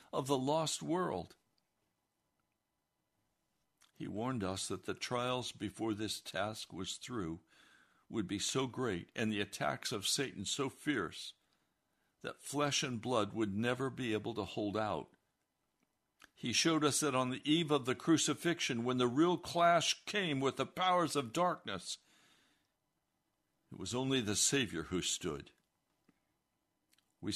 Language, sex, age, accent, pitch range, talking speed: English, male, 60-79, American, 105-155 Hz, 145 wpm